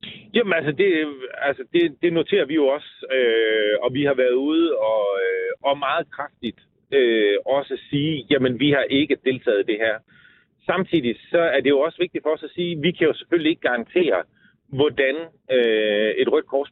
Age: 40-59